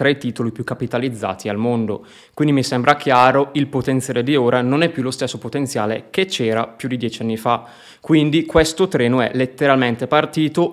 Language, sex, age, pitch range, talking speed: Italian, male, 20-39, 120-140 Hz, 190 wpm